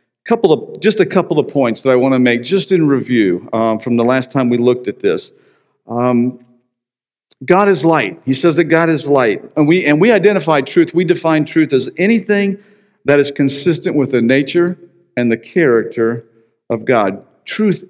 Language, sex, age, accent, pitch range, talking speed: English, male, 50-69, American, 115-170 Hz, 190 wpm